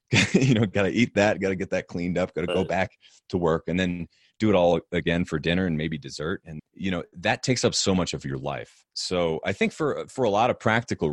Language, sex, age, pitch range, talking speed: English, male, 30-49, 75-95 Hz, 265 wpm